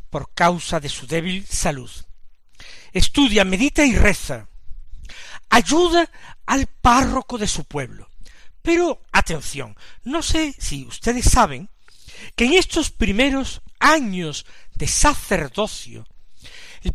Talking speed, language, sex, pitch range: 110 wpm, Spanish, male, 160-265 Hz